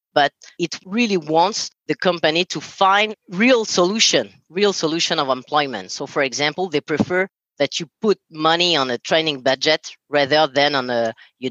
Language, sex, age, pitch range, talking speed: English, female, 30-49, 125-160 Hz, 165 wpm